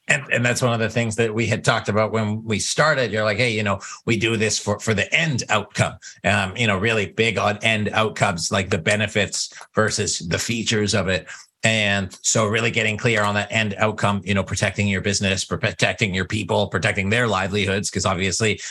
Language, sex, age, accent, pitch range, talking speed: English, male, 30-49, American, 105-125 Hz, 210 wpm